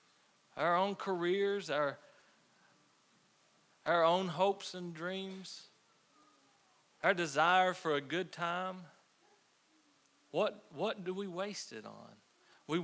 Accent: American